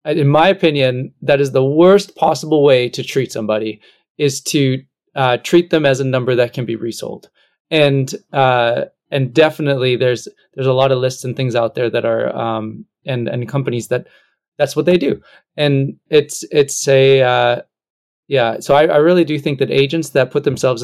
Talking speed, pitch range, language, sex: 190 wpm, 125-150 Hz, English, male